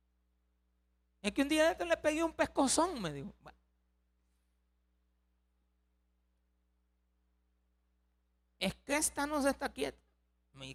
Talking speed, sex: 100 wpm, male